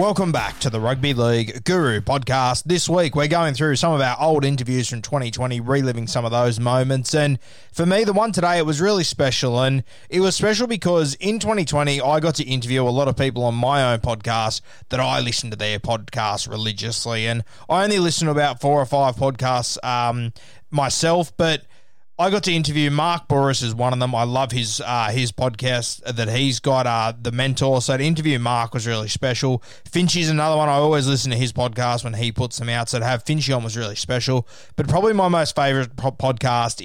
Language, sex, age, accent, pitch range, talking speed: English, male, 20-39, Australian, 120-145 Hz, 215 wpm